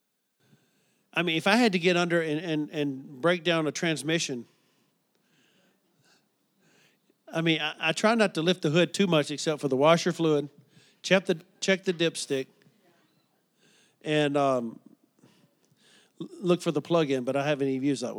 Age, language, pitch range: 50-69, English, 155-200 Hz